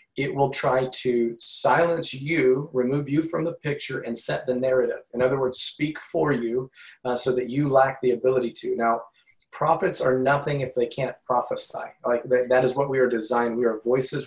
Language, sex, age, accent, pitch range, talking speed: English, male, 30-49, American, 120-135 Hz, 200 wpm